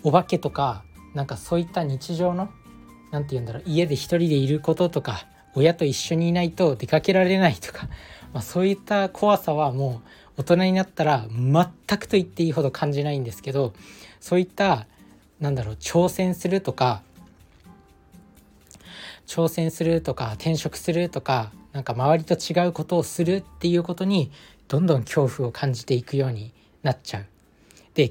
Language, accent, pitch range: Japanese, native, 125-175 Hz